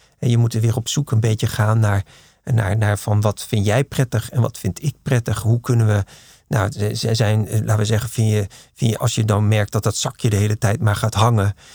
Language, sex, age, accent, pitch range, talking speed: Dutch, male, 50-69, Dutch, 105-120 Hz, 245 wpm